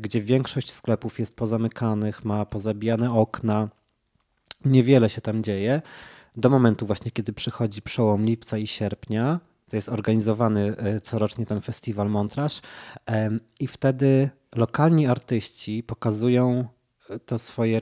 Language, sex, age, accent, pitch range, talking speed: Polish, male, 20-39, native, 110-125 Hz, 120 wpm